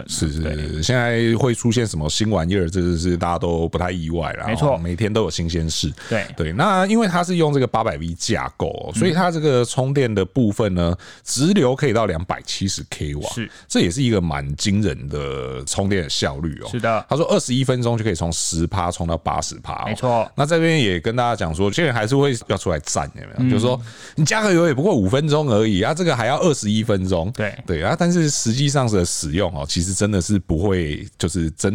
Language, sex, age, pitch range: Chinese, male, 30-49, 85-125 Hz